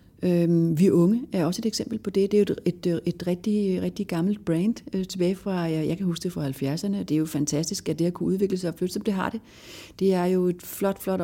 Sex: female